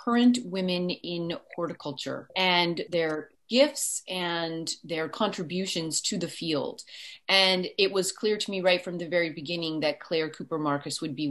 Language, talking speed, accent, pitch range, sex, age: English, 160 wpm, American, 155-190 Hz, female, 30-49